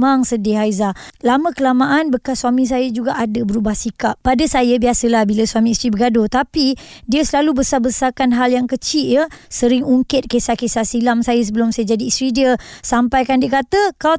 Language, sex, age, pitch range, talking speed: Malay, male, 20-39, 245-290 Hz, 175 wpm